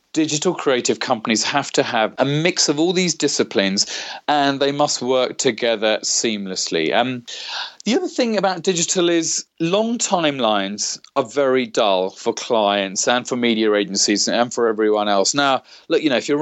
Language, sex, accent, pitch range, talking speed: English, male, British, 110-150 Hz, 170 wpm